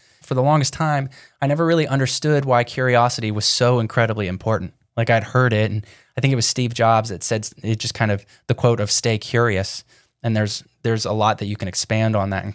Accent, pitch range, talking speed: American, 110-130 Hz, 230 wpm